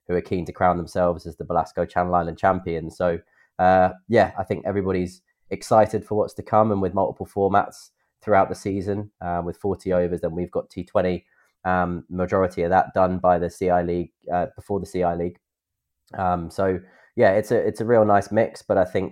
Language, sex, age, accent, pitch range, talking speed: English, male, 20-39, British, 85-95 Hz, 205 wpm